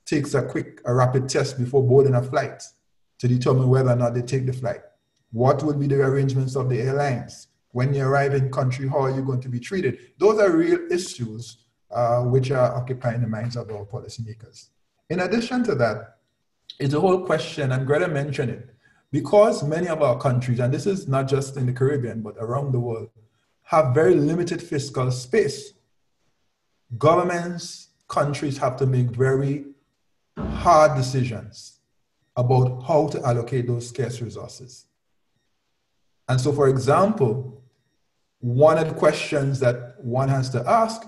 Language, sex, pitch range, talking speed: English, male, 120-145 Hz, 165 wpm